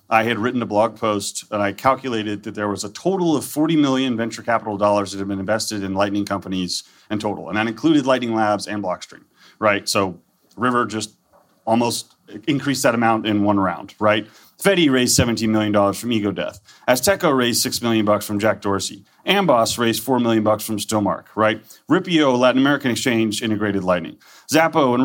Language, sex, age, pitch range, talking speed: English, male, 30-49, 105-130 Hz, 190 wpm